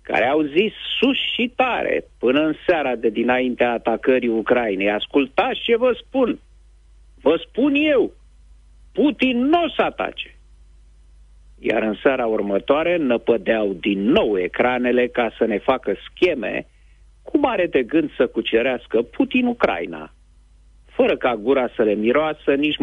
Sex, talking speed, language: male, 140 wpm, Romanian